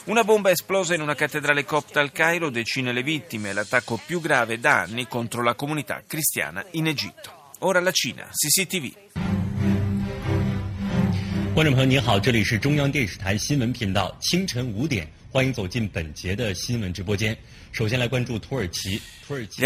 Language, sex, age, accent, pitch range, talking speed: Italian, male, 30-49, native, 115-145 Hz, 85 wpm